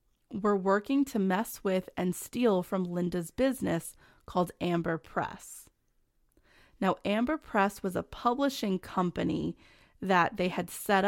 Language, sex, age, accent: English, female, 30-49, American